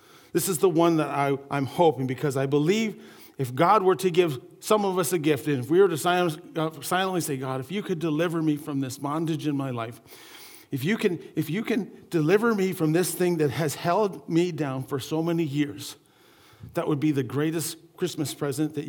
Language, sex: English, male